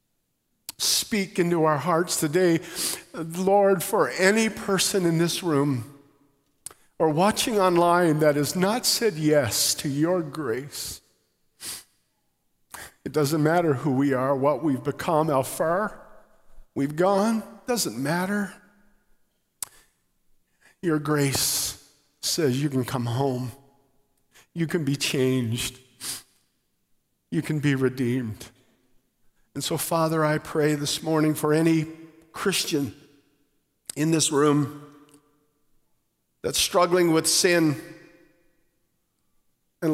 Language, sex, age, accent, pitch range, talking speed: English, male, 50-69, American, 145-170 Hz, 105 wpm